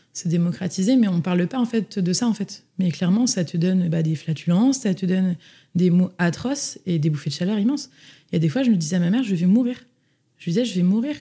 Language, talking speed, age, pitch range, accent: French, 280 wpm, 20-39, 170-205 Hz, French